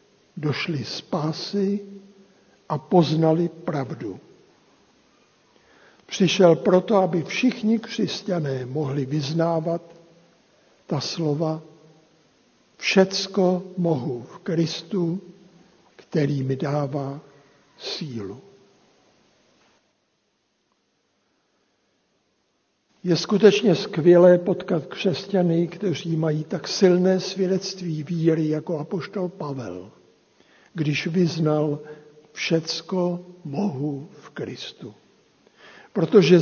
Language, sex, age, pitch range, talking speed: Czech, male, 60-79, 155-195 Hz, 70 wpm